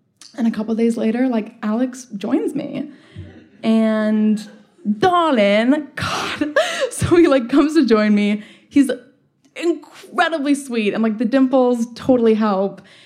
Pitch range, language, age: 215-290 Hz, English, 20-39